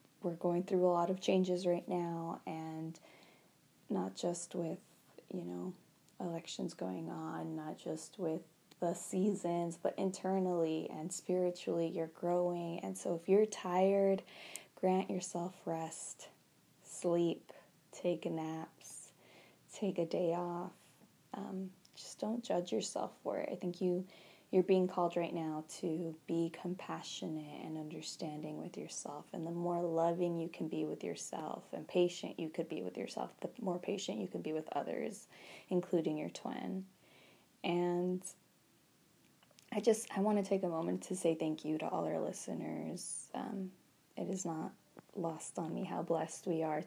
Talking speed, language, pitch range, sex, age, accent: 155 wpm, English, 160-185 Hz, female, 20-39, American